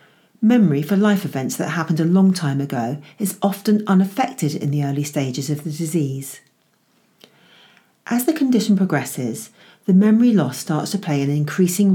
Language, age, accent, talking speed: English, 40-59, British, 160 wpm